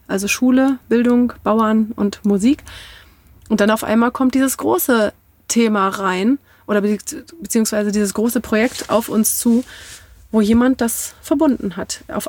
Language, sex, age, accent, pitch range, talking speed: German, female, 30-49, German, 220-255 Hz, 145 wpm